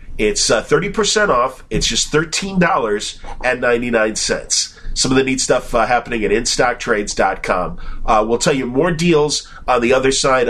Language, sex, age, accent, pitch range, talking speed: English, male, 40-59, American, 105-145 Hz, 145 wpm